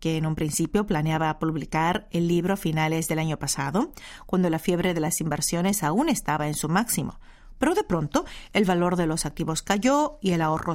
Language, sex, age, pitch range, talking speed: Spanish, female, 40-59, 160-205 Hz, 200 wpm